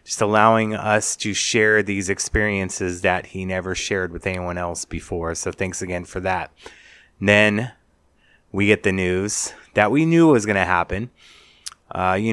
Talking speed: 160 wpm